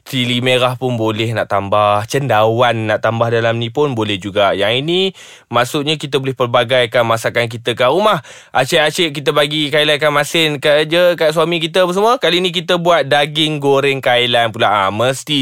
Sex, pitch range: male, 120-160 Hz